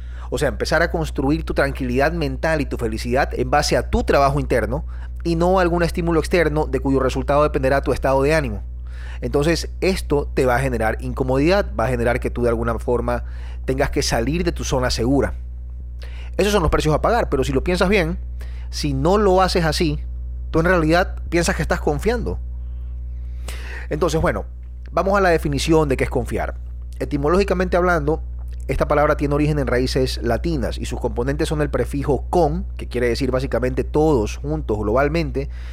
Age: 30-49